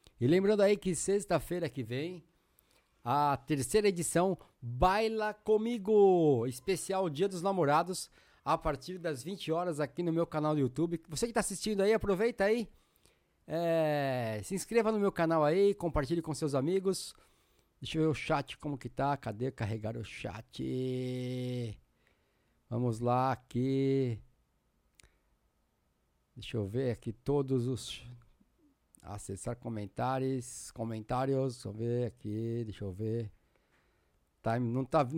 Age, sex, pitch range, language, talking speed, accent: 50-69, male, 120-170 Hz, Portuguese, 130 wpm, Brazilian